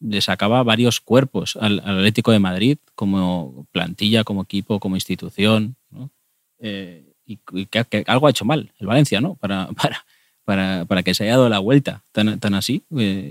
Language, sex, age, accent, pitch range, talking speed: Spanish, male, 30-49, Spanish, 100-120 Hz, 190 wpm